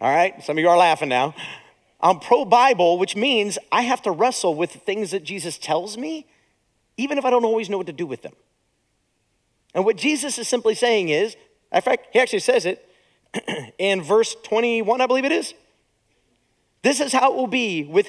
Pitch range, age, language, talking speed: 155-245 Hz, 40-59, English, 200 wpm